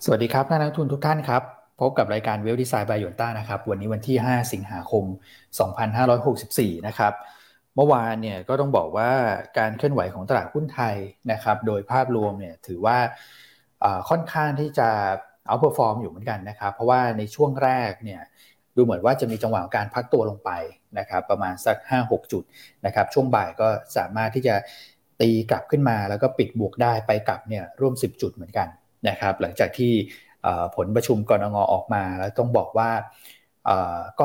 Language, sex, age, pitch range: Thai, male, 20-39, 105-125 Hz